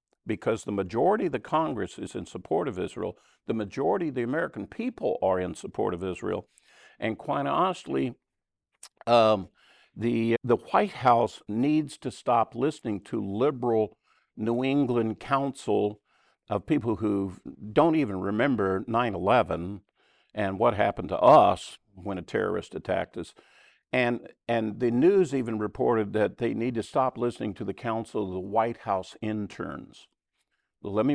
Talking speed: 150 wpm